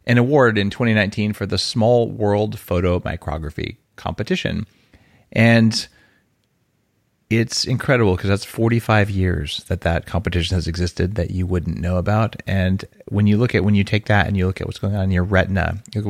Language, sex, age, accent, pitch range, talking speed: English, male, 30-49, American, 95-120 Hz, 180 wpm